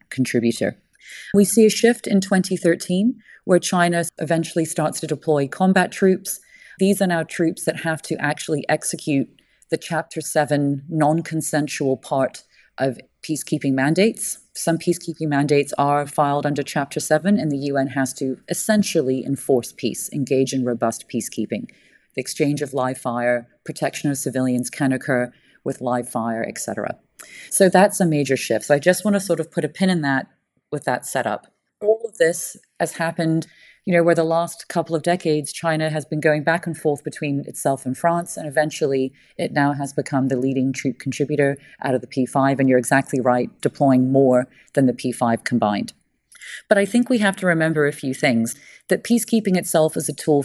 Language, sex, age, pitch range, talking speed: English, female, 30-49, 135-170 Hz, 180 wpm